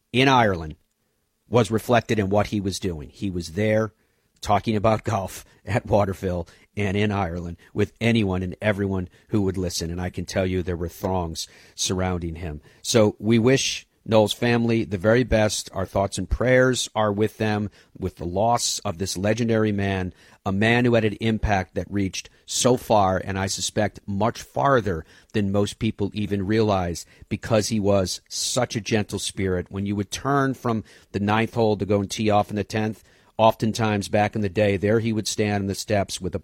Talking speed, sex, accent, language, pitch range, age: 190 wpm, male, American, English, 95-115 Hz, 50-69